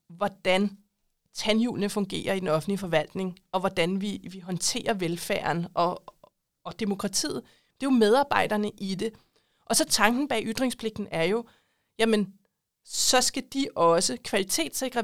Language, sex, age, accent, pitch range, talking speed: Danish, female, 30-49, native, 190-245 Hz, 140 wpm